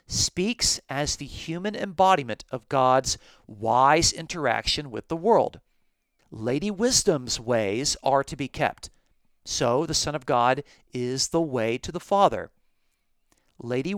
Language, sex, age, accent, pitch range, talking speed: English, male, 40-59, American, 120-160 Hz, 135 wpm